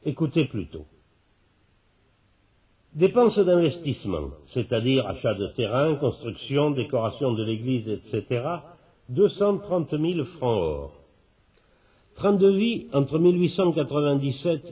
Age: 60-79